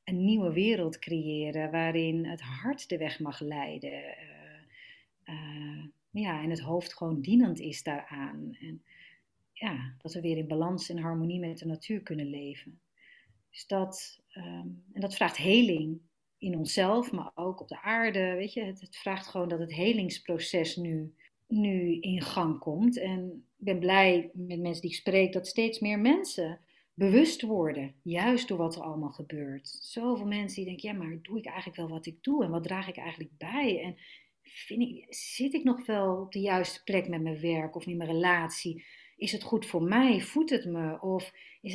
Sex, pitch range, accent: female, 160-210 Hz, Dutch